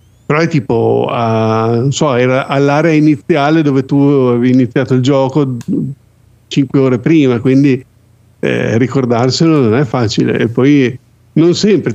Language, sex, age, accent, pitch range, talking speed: Italian, male, 50-69, native, 120-145 Hz, 140 wpm